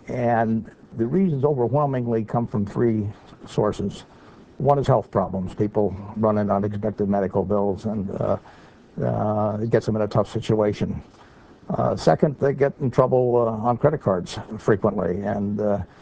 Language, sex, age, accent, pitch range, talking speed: English, male, 60-79, American, 105-130 Hz, 155 wpm